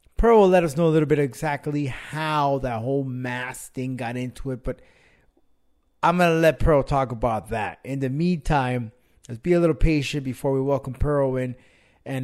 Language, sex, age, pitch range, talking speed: English, male, 30-49, 125-155 Hz, 190 wpm